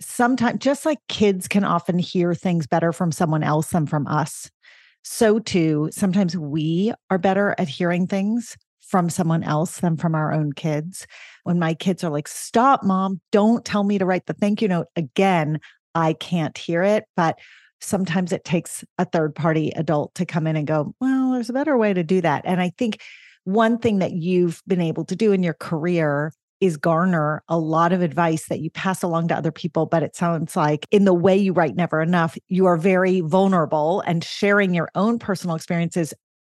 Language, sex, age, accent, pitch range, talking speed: English, female, 40-59, American, 165-195 Hz, 200 wpm